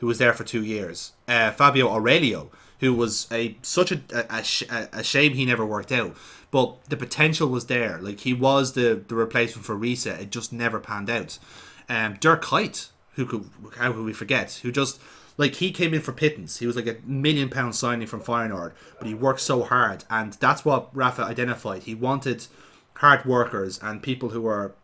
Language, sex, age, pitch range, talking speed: English, male, 30-49, 115-140 Hz, 205 wpm